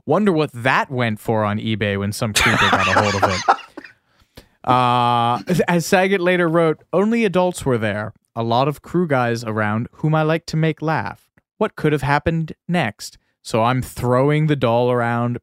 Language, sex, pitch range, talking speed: English, male, 110-145 Hz, 185 wpm